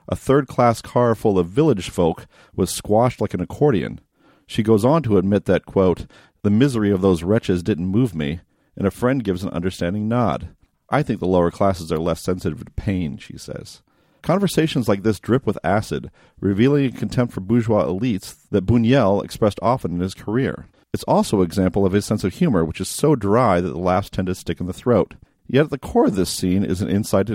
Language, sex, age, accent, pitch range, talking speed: English, male, 40-59, American, 95-120 Hz, 215 wpm